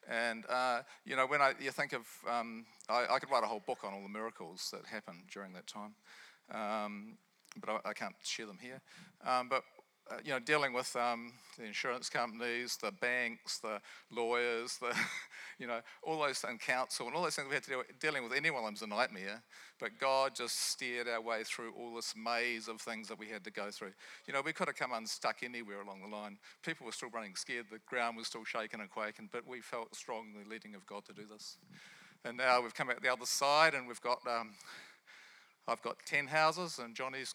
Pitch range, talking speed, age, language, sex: 115-145 Hz, 225 wpm, 40-59, English, male